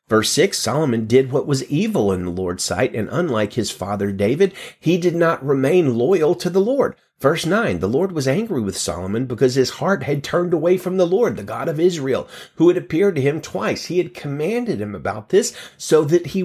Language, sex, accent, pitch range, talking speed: English, male, American, 115-180 Hz, 220 wpm